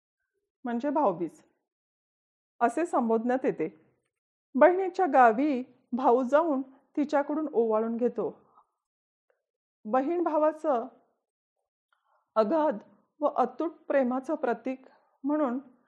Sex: female